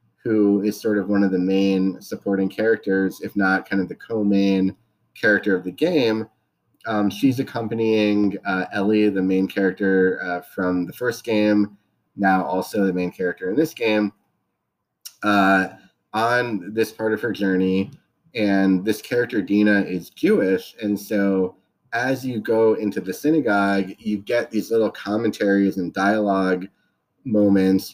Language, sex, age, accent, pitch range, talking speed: English, male, 30-49, American, 95-110 Hz, 150 wpm